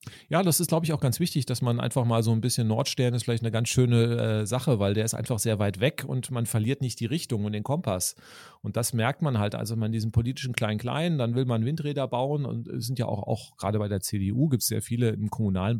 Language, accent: English, German